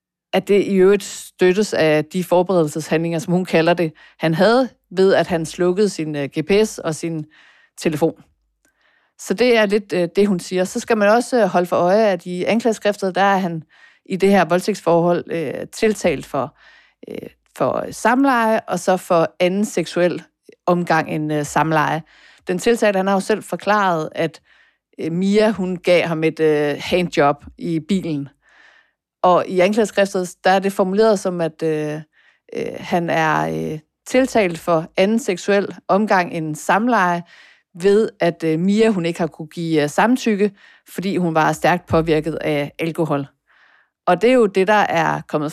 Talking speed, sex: 160 wpm, female